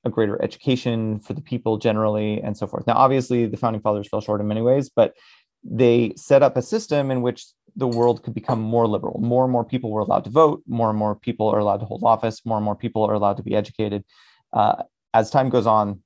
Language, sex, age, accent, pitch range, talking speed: English, male, 30-49, American, 105-120 Hz, 245 wpm